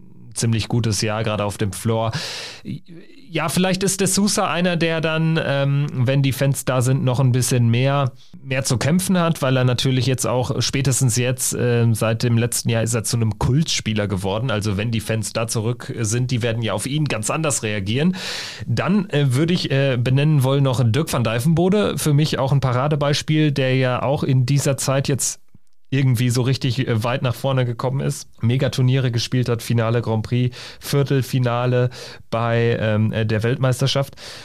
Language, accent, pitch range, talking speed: German, German, 120-160 Hz, 175 wpm